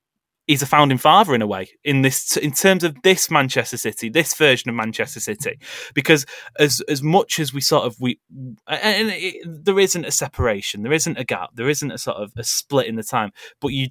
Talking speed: 220 wpm